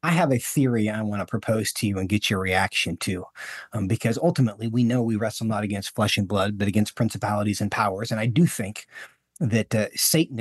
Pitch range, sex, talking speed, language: 105-130 Hz, male, 225 wpm, English